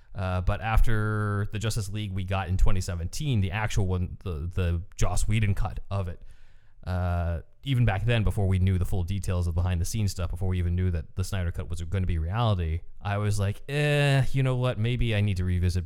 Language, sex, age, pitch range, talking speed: English, male, 20-39, 90-105 Hz, 220 wpm